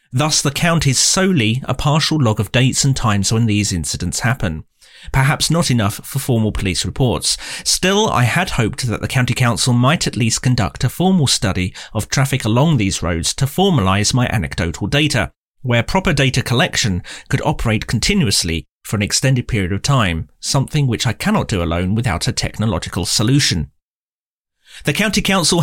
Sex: male